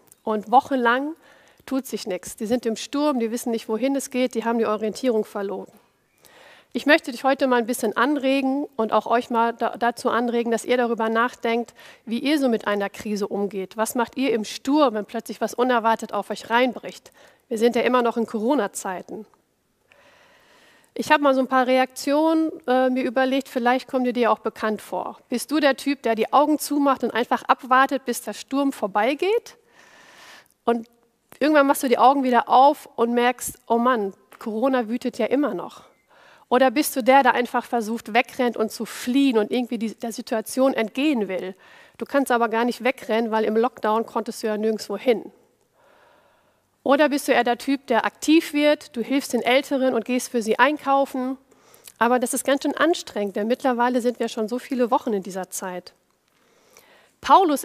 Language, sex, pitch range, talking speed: German, female, 225-270 Hz, 185 wpm